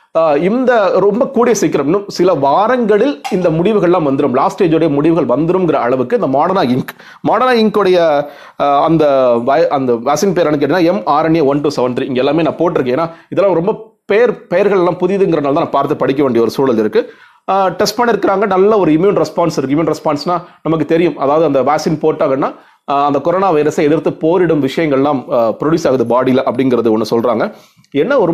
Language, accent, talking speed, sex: Tamil, native, 155 wpm, male